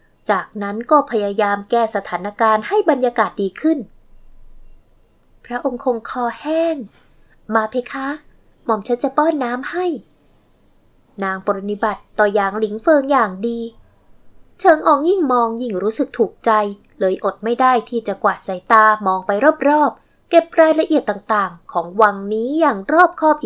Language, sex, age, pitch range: Thai, female, 20-39, 205-280 Hz